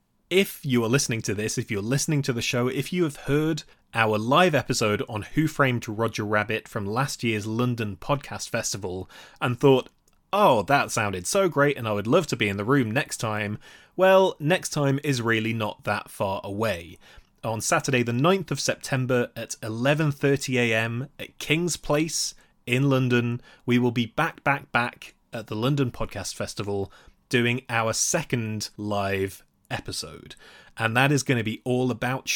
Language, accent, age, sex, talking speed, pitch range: English, British, 20-39, male, 175 wpm, 105-140 Hz